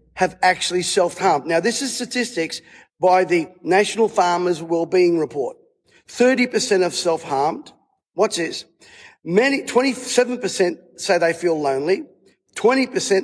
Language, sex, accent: English, male, Australian